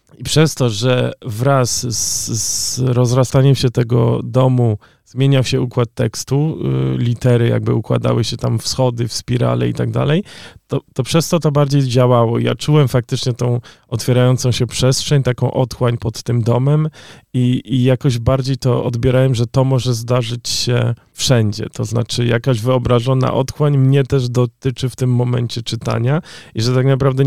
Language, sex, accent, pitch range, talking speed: Polish, male, native, 115-130 Hz, 165 wpm